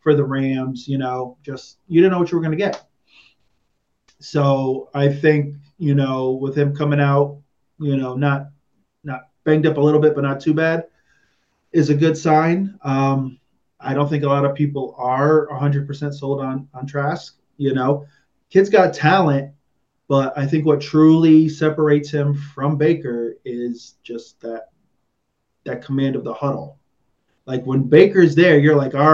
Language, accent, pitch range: English, American, 130-150 Hz